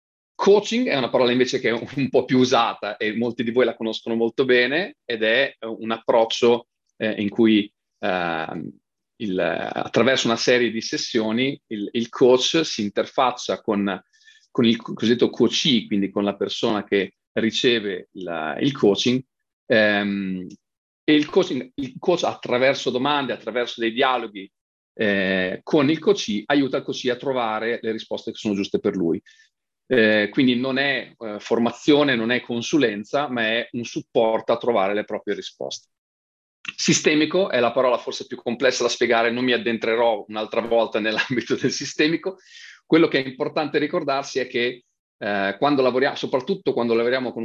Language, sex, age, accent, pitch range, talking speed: Italian, male, 40-59, native, 110-135 Hz, 160 wpm